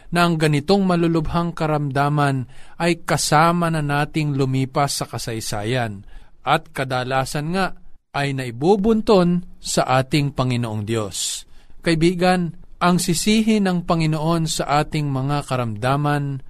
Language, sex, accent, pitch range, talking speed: Filipino, male, native, 135-180 Hz, 110 wpm